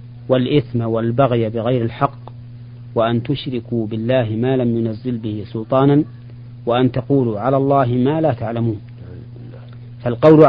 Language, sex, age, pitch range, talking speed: Arabic, male, 40-59, 120-130 Hz, 115 wpm